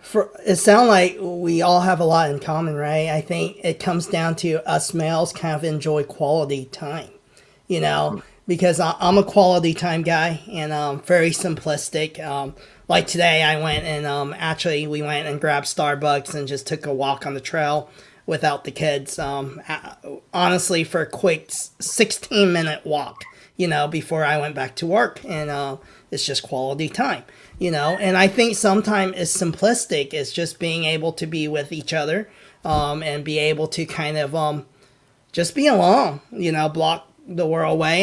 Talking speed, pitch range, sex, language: 185 wpm, 150-175 Hz, male, English